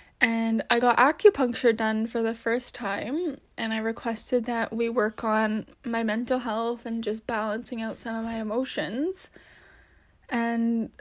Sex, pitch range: female, 225-255 Hz